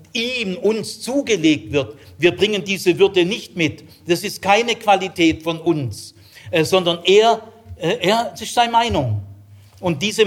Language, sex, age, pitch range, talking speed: German, male, 60-79, 115-190 Hz, 150 wpm